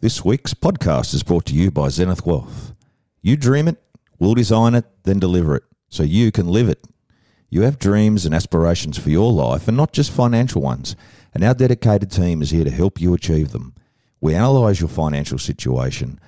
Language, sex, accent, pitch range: English, male, Australian, 85-120 Hz